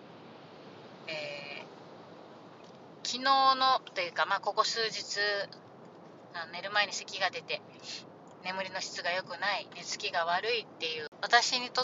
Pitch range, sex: 165-250 Hz, female